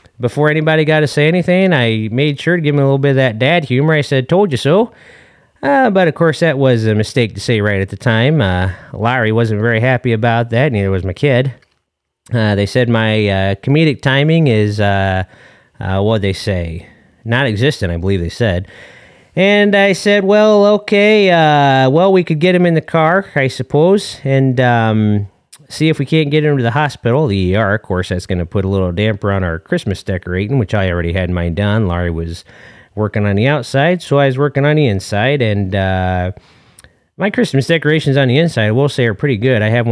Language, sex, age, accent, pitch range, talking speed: English, male, 30-49, American, 100-145 Hz, 215 wpm